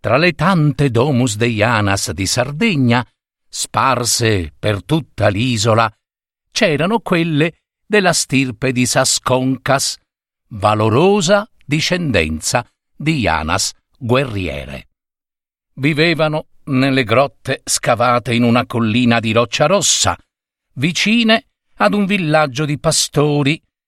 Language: Italian